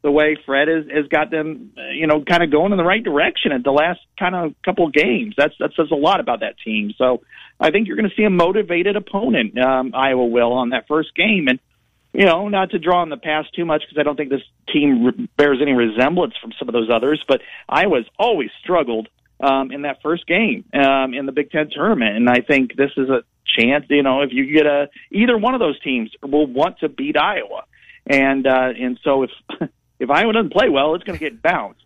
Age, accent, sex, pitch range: 40-59, American, male, 130-160 Hz